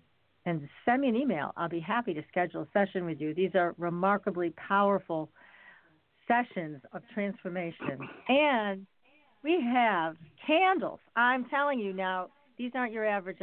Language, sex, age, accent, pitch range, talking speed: English, female, 50-69, American, 175-230 Hz, 145 wpm